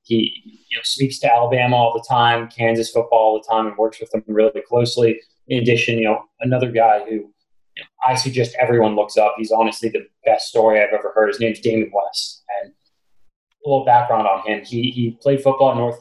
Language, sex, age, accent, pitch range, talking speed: English, male, 20-39, American, 115-130 Hz, 215 wpm